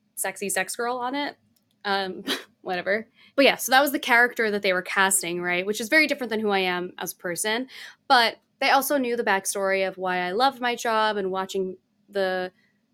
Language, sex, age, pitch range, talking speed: English, female, 10-29, 195-235 Hz, 210 wpm